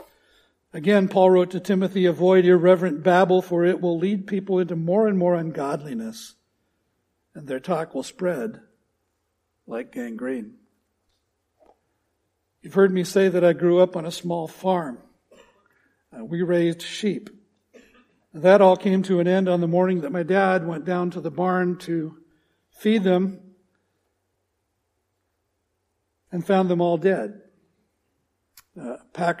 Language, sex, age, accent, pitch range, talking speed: English, male, 60-79, American, 145-185 Hz, 135 wpm